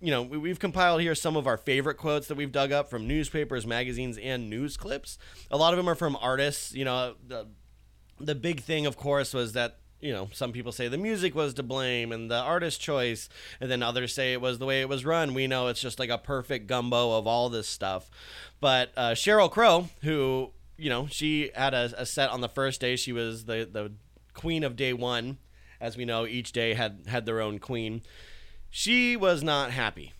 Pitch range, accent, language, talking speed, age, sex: 115-145 Hz, American, English, 225 wpm, 30-49, male